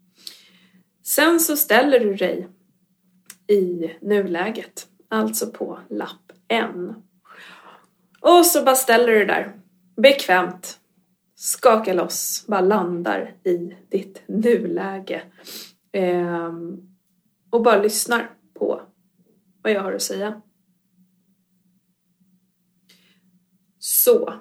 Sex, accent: female, native